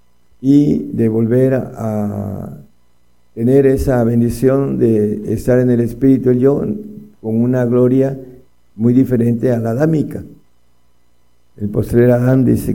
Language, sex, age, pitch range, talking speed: Spanish, male, 50-69, 105-130 Hz, 125 wpm